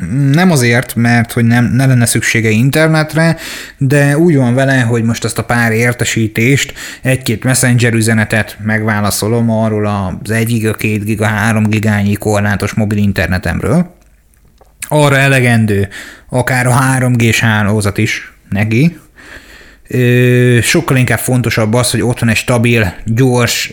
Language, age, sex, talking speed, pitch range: Hungarian, 30-49, male, 135 wpm, 110-130 Hz